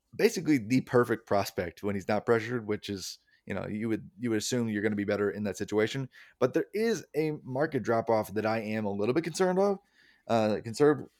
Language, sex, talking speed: English, male, 210 wpm